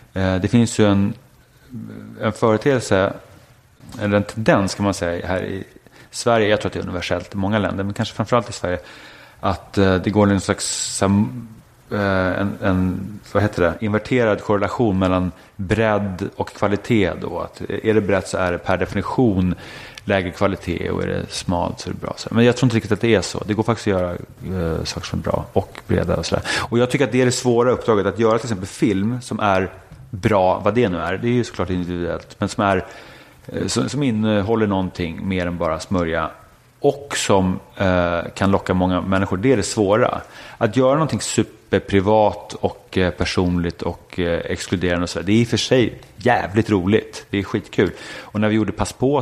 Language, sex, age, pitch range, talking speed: English, male, 30-49, 95-115 Hz, 195 wpm